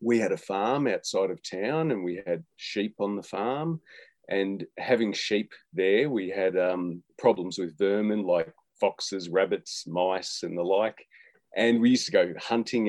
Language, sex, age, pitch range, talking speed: English, male, 30-49, 100-130 Hz, 170 wpm